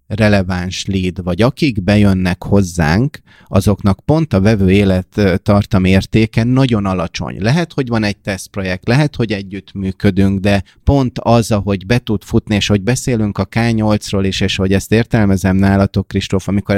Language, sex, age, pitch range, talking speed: Hungarian, male, 30-49, 95-115 Hz, 155 wpm